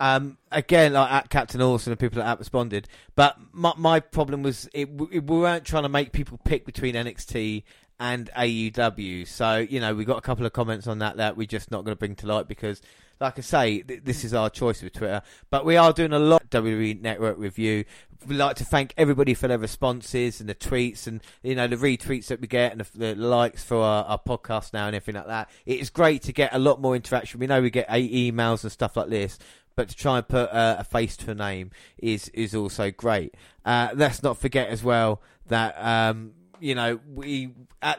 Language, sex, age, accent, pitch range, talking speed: English, male, 30-49, British, 110-135 Hz, 230 wpm